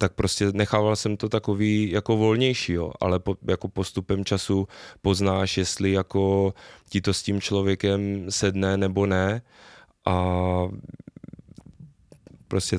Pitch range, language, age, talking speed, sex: 90-95 Hz, Czech, 20-39, 125 wpm, male